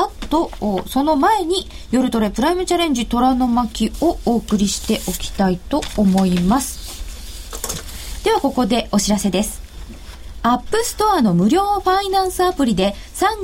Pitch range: 225-355 Hz